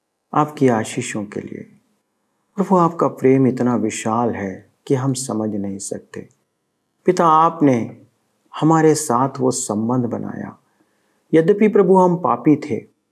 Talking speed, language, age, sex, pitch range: 130 wpm, Hindi, 50-69, male, 125-165 Hz